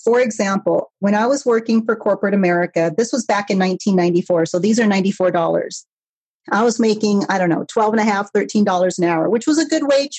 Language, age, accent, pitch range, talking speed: English, 40-59, American, 190-245 Hz, 195 wpm